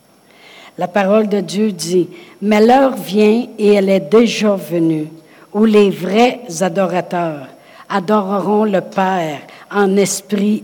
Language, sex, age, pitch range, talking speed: French, female, 60-79, 175-210 Hz, 130 wpm